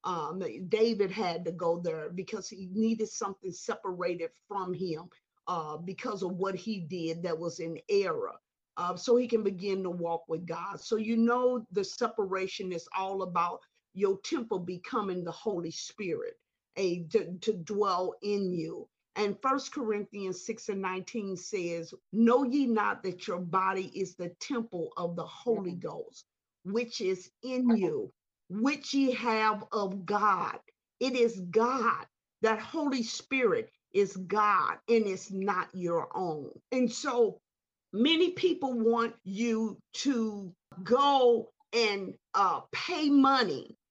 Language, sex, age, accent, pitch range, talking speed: English, female, 50-69, American, 190-255 Hz, 145 wpm